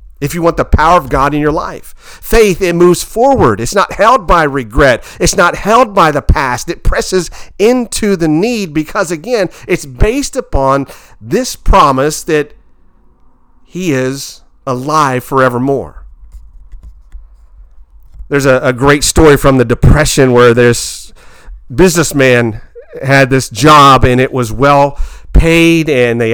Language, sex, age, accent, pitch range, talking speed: English, male, 50-69, American, 125-155 Hz, 145 wpm